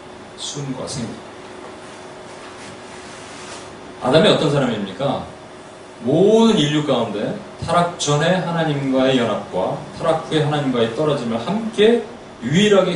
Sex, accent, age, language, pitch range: male, native, 30-49, Korean, 135-200 Hz